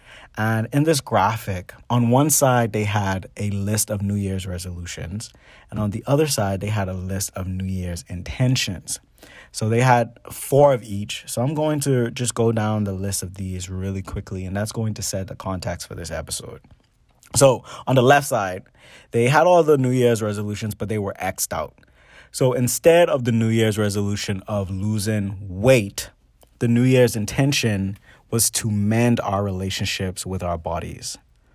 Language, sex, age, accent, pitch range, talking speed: English, male, 30-49, American, 95-120 Hz, 185 wpm